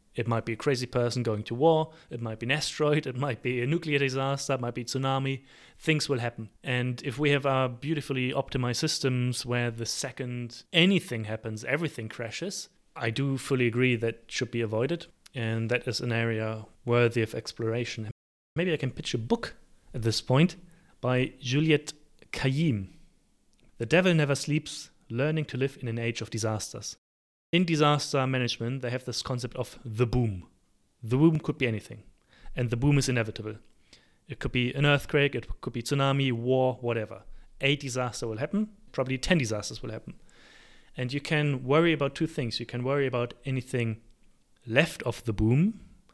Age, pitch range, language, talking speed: 30-49, 115-145 Hz, English, 180 wpm